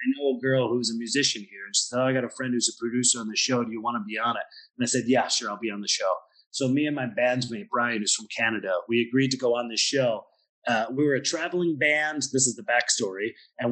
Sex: male